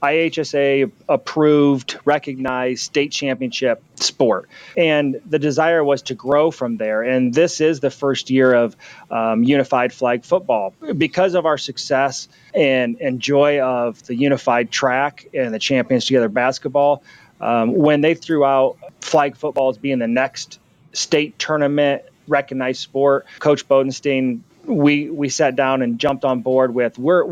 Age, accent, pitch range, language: 30-49, American, 130-150 Hz, English